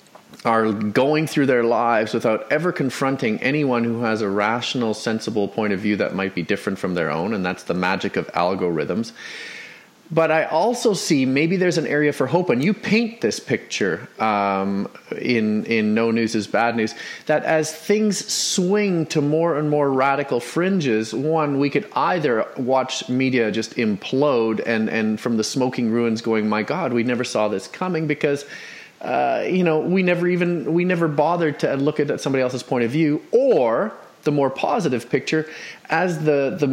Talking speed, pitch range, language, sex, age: 180 wpm, 125-165 Hz, English, male, 30-49